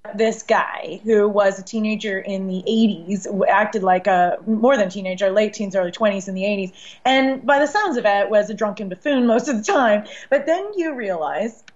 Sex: female